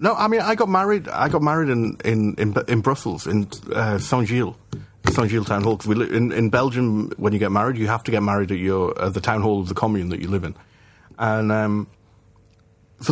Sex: male